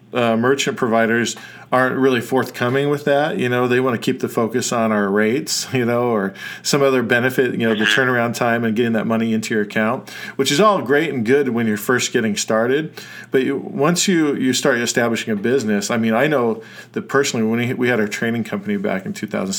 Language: English